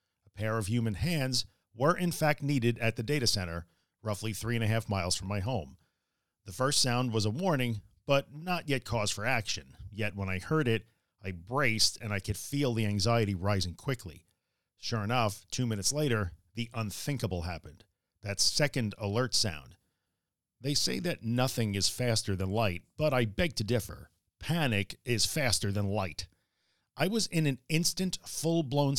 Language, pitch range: English, 100-130 Hz